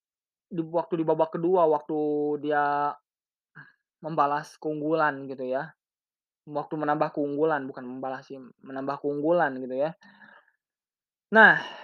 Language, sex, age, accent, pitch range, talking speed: Indonesian, male, 20-39, native, 165-235 Hz, 105 wpm